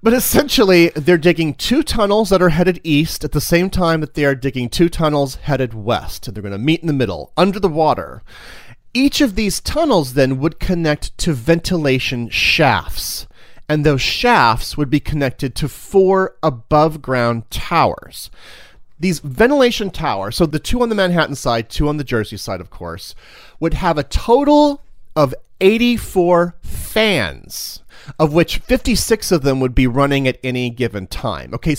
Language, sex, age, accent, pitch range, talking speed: English, male, 30-49, American, 130-185 Hz, 170 wpm